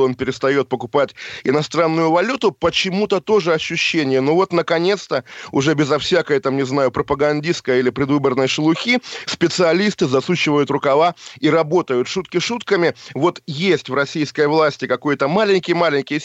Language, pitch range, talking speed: Russian, 140-175 Hz, 135 wpm